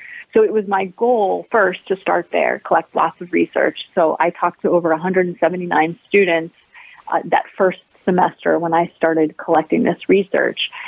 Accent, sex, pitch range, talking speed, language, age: American, female, 165-185 Hz, 165 wpm, English, 30-49